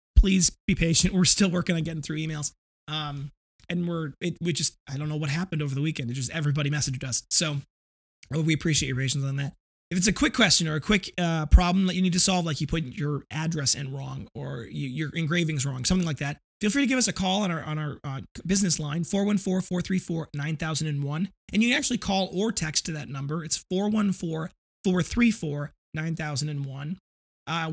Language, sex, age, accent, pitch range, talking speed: English, male, 20-39, American, 150-180 Hz, 205 wpm